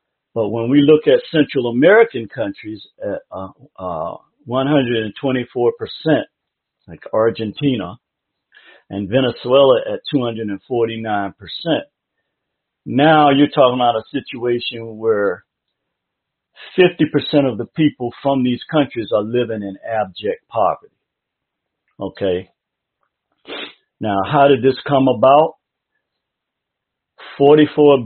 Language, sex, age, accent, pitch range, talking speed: English, male, 50-69, American, 115-140 Hz, 95 wpm